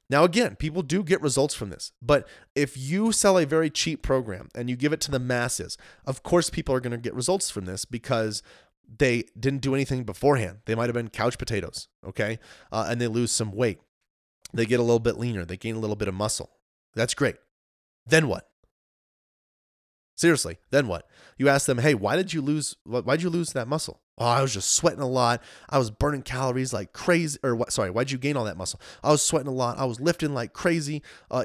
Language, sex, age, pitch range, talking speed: English, male, 30-49, 120-150 Hz, 220 wpm